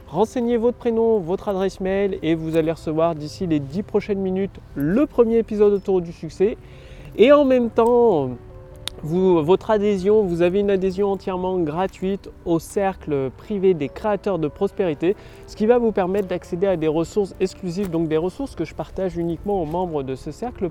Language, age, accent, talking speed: French, 20-39, French, 185 wpm